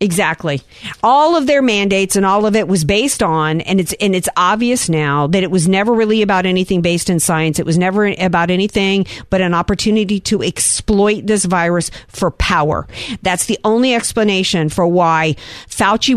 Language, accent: English, American